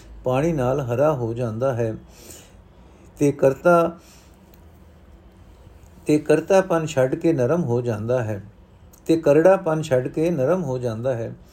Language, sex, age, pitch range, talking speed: Punjabi, male, 50-69, 135-165 Hz, 100 wpm